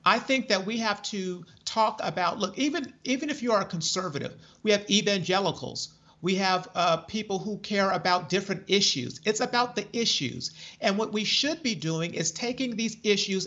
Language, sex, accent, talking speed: English, male, American, 185 wpm